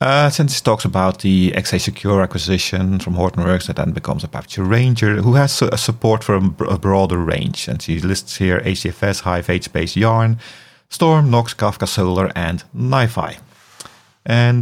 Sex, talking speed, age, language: male, 170 wpm, 40-59, English